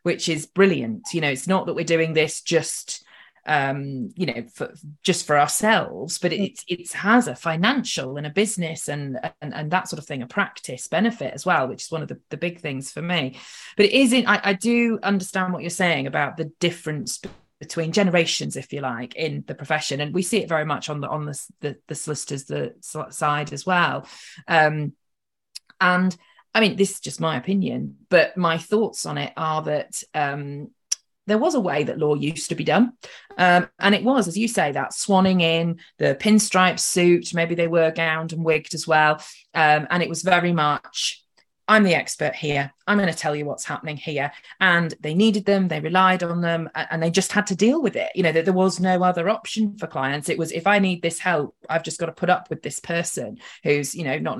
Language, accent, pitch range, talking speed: English, British, 150-190 Hz, 220 wpm